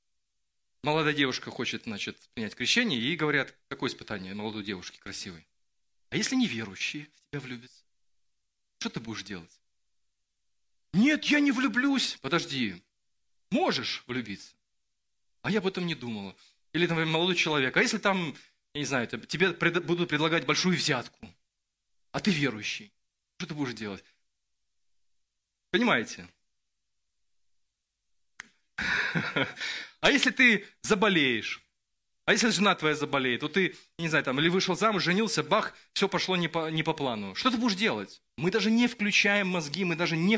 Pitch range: 120-195 Hz